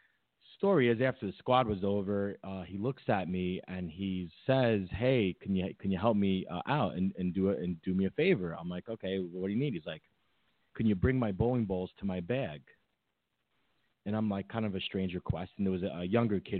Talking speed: 240 wpm